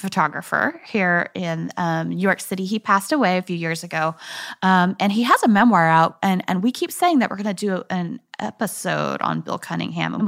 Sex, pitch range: female, 180-230 Hz